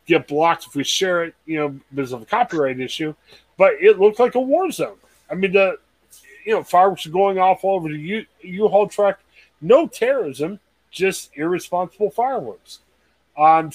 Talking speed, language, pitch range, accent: 175 wpm, English, 150-200 Hz, American